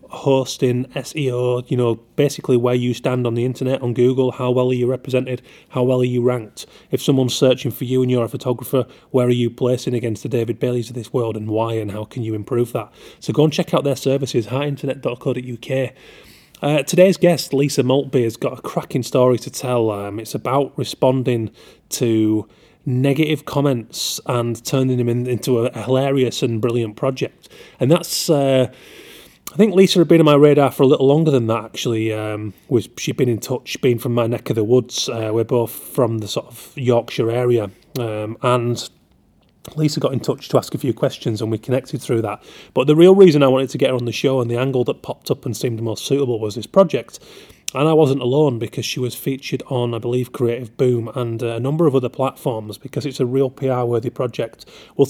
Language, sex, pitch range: English, male, 120-140 Hz